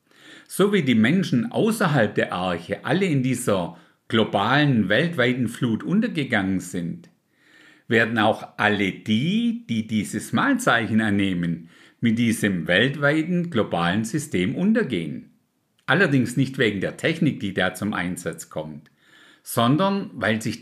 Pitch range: 105-160 Hz